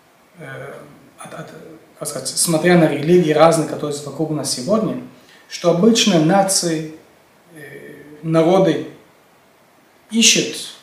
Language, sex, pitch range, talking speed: Russian, male, 155-195 Hz, 90 wpm